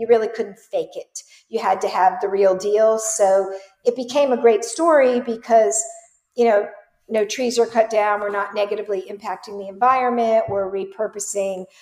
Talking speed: 175 wpm